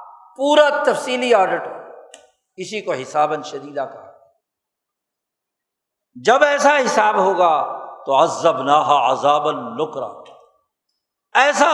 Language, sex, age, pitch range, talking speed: Urdu, male, 60-79, 195-290 Hz, 90 wpm